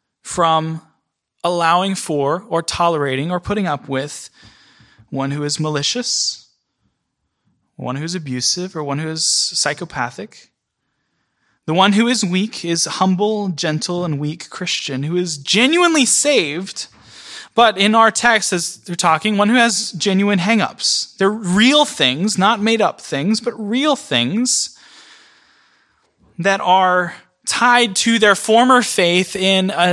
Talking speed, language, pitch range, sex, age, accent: 135 wpm, English, 150-210 Hz, male, 20-39, American